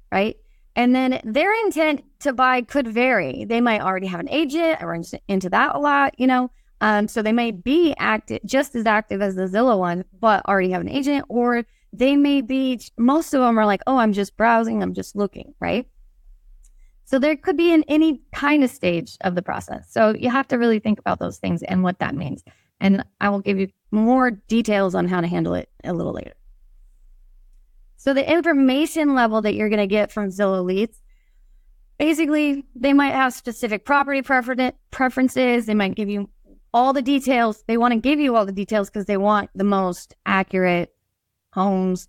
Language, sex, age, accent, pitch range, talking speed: English, female, 20-39, American, 195-260 Hz, 195 wpm